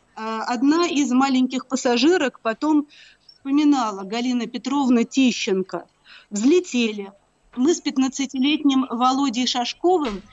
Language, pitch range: Russian, 235-285 Hz